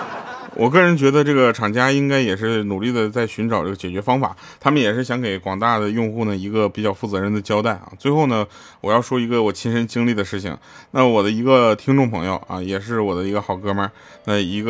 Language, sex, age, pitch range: Chinese, male, 20-39, 100-125 Hz